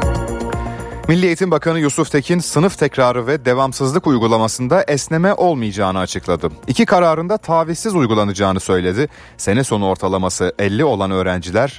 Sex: male